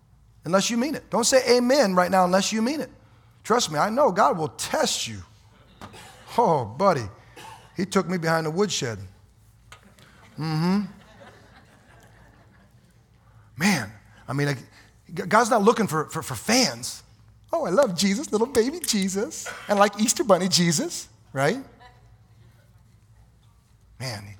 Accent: American